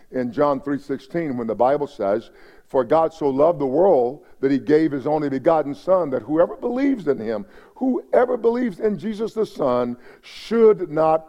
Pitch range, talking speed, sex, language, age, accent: 130-180 Hz, 175 wpm, male, English, 50-69, American